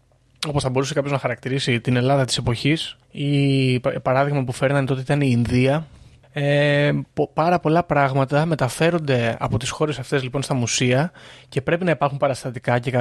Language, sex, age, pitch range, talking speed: Greek, male, 20-39, 125-155 Hz, 155 wpm